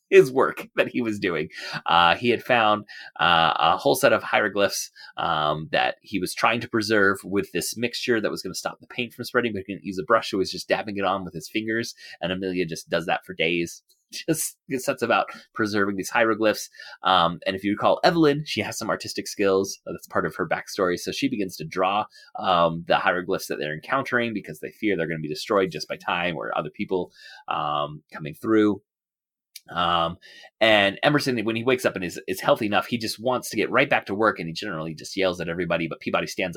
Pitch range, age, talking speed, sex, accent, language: 90-120 Hz, 30-49, 225 wpm, male, American, English